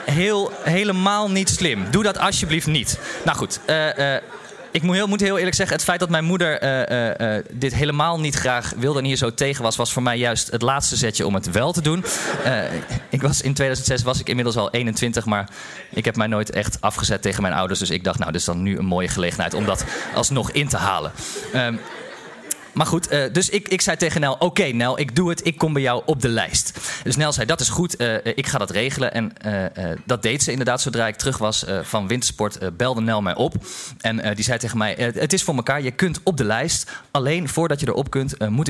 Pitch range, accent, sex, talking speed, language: 110-155 Hz, Dutch, male, 240 wpm, Dutch